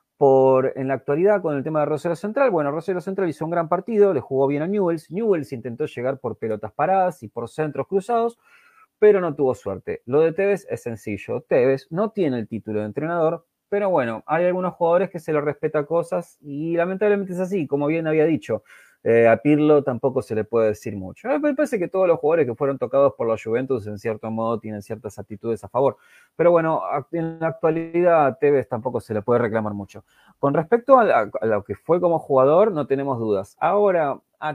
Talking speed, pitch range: 210 wpm, 115-170 Hz